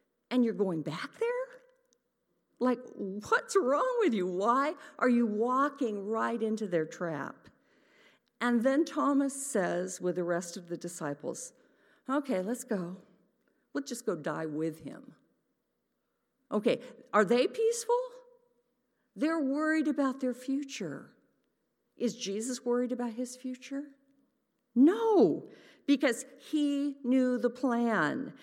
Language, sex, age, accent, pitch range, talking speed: English, female, 50-69, American, 205-280 Hz, 120 wpm